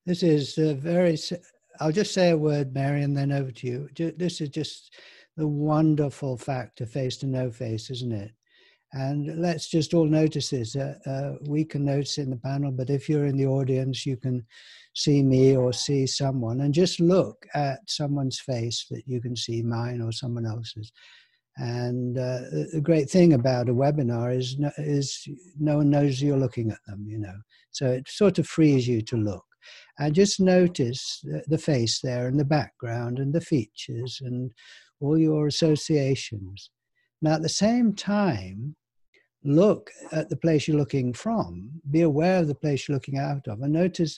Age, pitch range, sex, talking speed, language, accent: 60-79, 130-170 Hz, male, 185 wpm, English, British